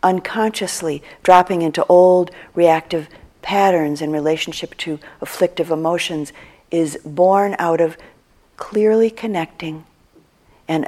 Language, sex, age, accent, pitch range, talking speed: English, female, 50-69, American, 155-190 Hz, 100 wpm